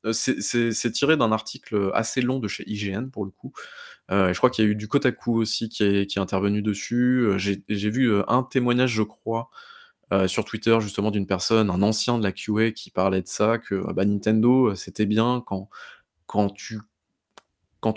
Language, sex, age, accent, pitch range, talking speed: French, male, 20-39, French, 100-115 Hz, 205 wpm